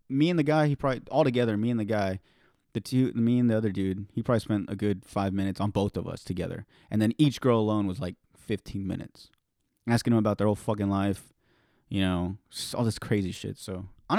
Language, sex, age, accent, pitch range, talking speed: English, male, 30-49, American, 95-115 Hz, 235 wpm